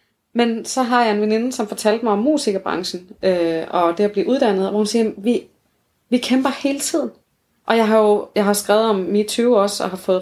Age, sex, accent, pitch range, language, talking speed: 30-49, female, native, 195-240 Hz, Danish, 230 wpm